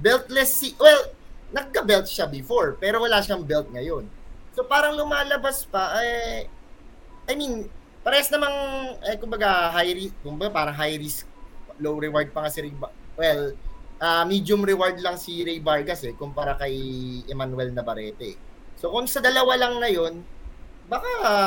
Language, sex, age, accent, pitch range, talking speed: Filipino, male, 20-39, native, 150-225 Hz, 155 wpm